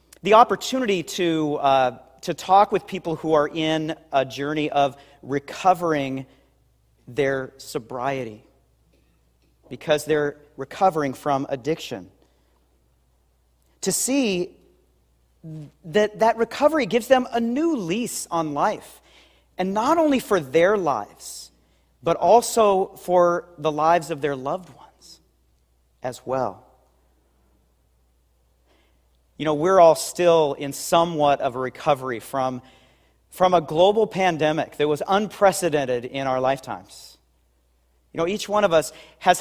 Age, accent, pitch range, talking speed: 40-59, American, 120-185 Hz, 120 wpm